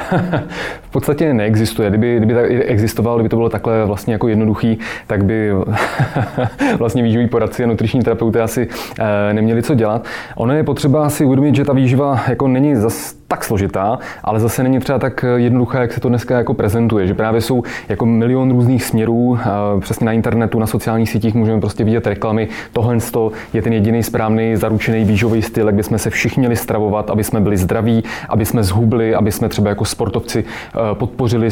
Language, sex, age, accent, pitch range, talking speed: Czech, male, 20-39, native, 115-135 Hz, 180 wpm